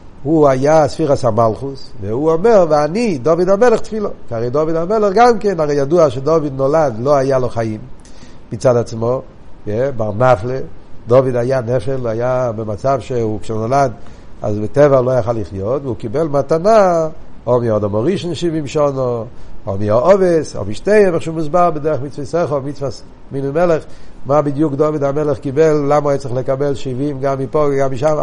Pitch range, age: 125-170 Hz, 50-69